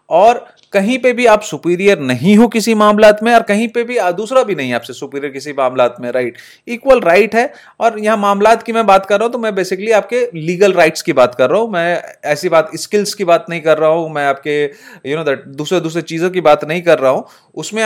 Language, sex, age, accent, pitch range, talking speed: Hindi, male, 30-49, native, 150-210 Hz, 245 wpm